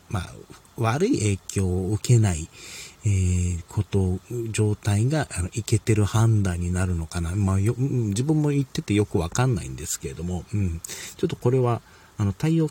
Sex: male